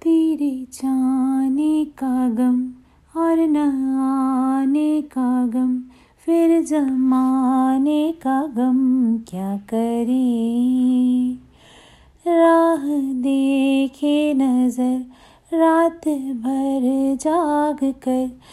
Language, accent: Hindi, native